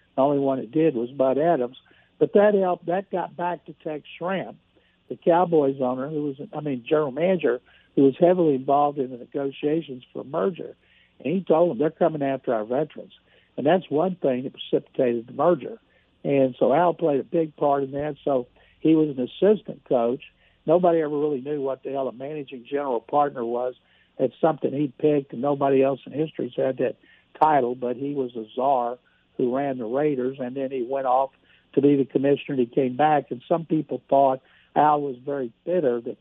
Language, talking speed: English, 205 wpm